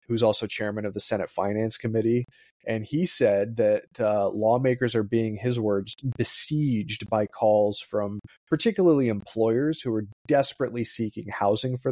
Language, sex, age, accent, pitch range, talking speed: English, male, 30-49, American, 105-130 Hz, 150 wpm